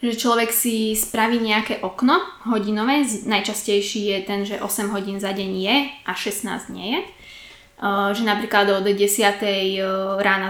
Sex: female